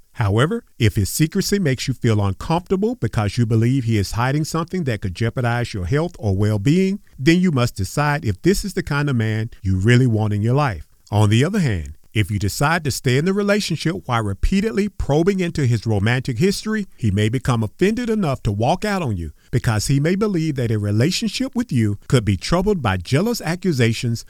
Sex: male